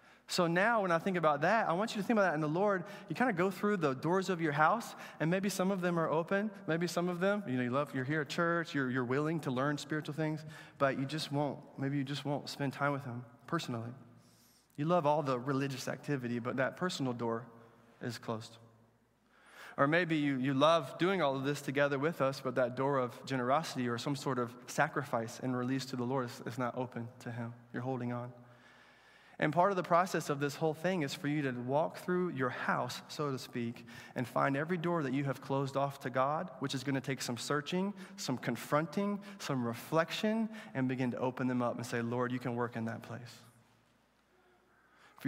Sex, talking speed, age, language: male, 225 wpm, 20-39, English